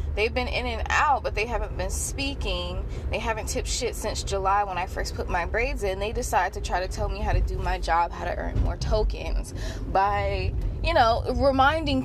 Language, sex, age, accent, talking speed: English, female, 20-39, American, 220 wpm